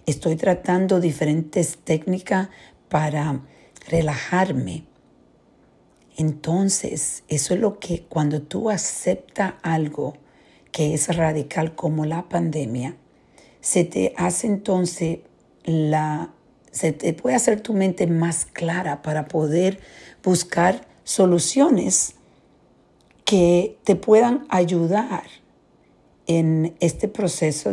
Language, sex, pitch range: Spanish, female, 150-185 Hz